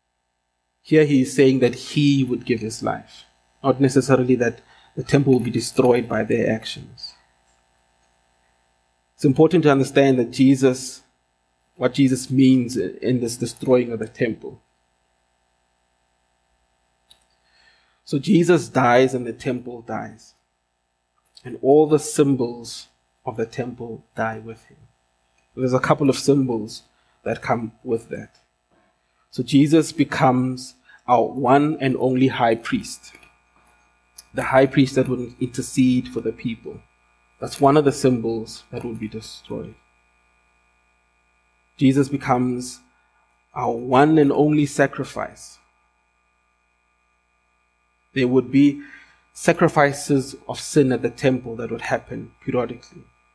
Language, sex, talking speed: English, male, 125 wpm